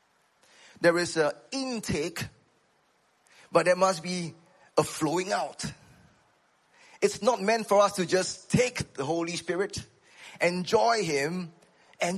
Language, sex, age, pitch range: English, male, 20-39, 145-195 Hz